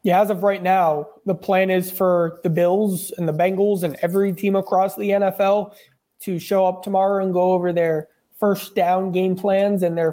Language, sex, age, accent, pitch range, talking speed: English, male, 20-39, American, 175-200 Hz, 200 wpm